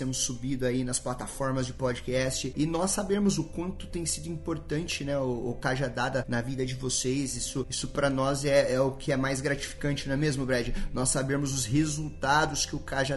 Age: 20-39